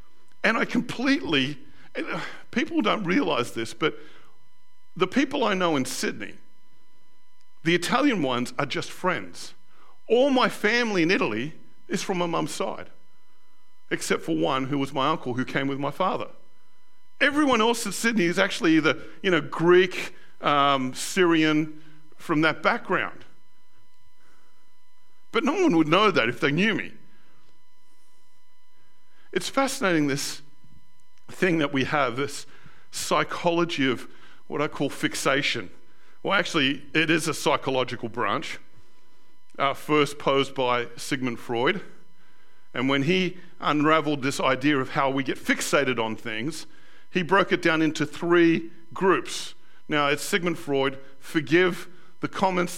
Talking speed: 140 wpm